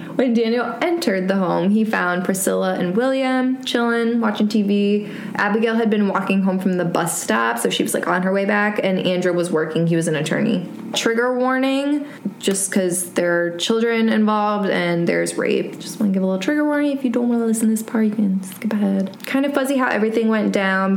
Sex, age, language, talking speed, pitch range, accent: female, 20-39, English, 220 wpm, 180-225 Hz, American